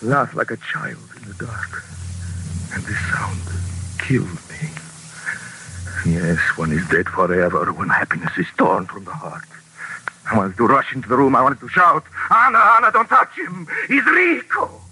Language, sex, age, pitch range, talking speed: English, male, 60-79, 90-135 Hz, 170 wpm